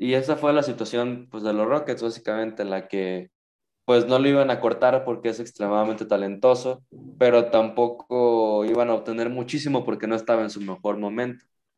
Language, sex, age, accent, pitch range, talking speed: Spanish, male, 20-39, Mexican, 110-130 Hz, 185 wpm